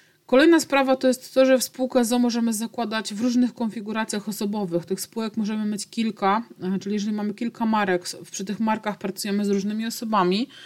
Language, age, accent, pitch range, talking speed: Polish, 30-49, native, 195-230 Hz, 180 wpm